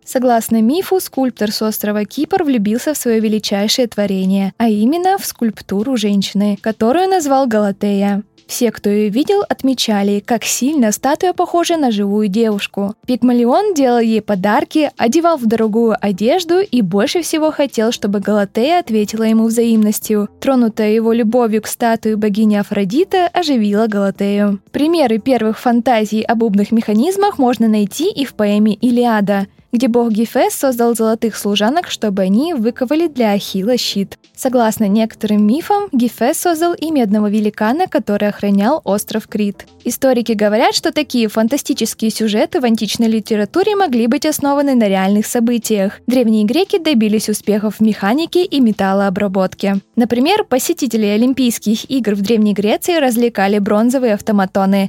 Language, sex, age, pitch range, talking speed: Russian, female, 20-39, 210-265 Hz, 140 wpm